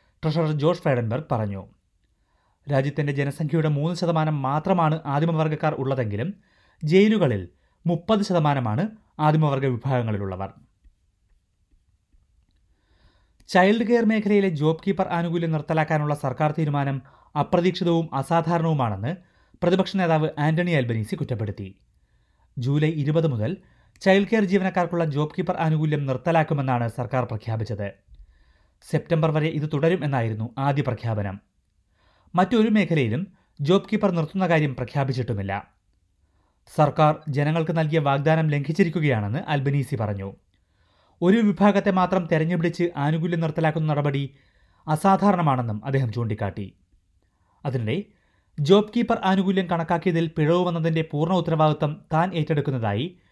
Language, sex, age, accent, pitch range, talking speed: Malayalam, male, 30-49, native, 115-170 Hz, 95 wpm